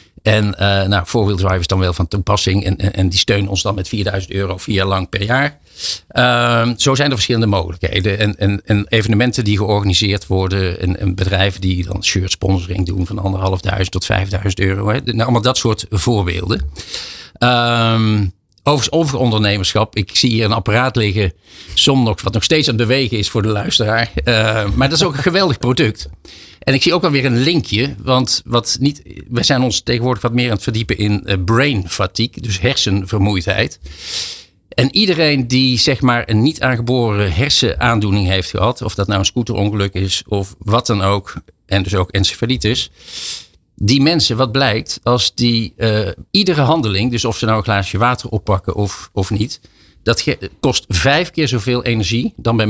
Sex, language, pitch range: male, Dutch, 95-125 Hz